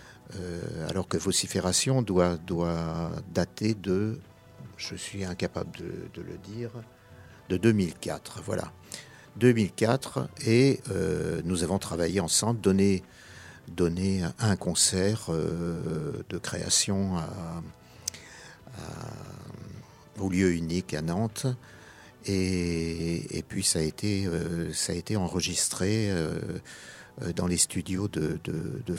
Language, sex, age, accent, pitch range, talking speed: French, male, 50-69, French, 90-110 Hz, 115 wpm